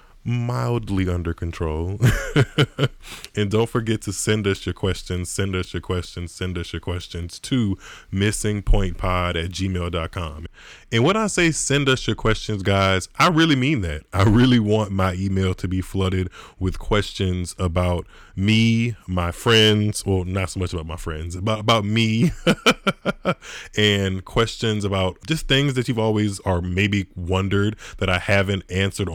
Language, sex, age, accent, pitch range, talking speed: English, male, 20-39, American, 90-110 Hz, 155 wpm